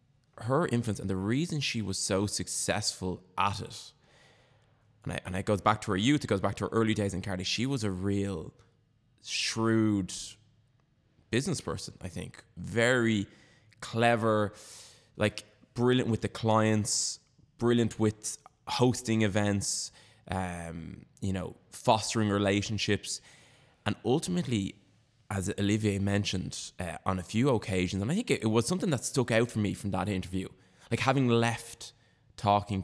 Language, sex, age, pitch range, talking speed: English, male, 20-39, 95-115 Hz, 150 wpm